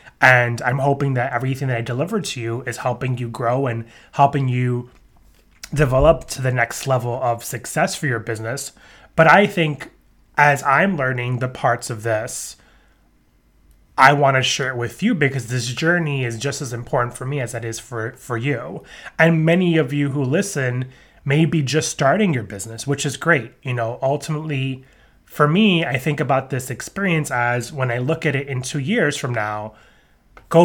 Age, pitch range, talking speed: 20-39, 125-155 Hz, 190 wpm